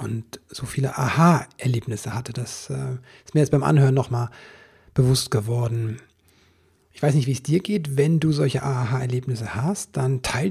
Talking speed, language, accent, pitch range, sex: 160 wpm, German, German, 125-145 Hz, male